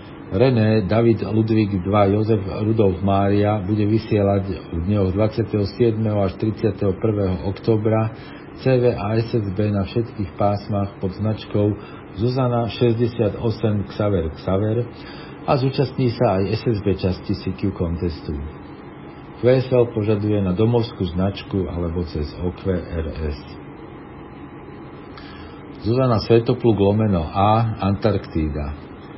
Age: 50-69